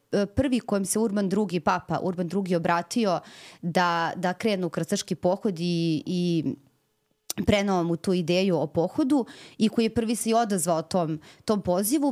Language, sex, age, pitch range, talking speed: English, female, 30-49, 175-215 Hz, 160 wpm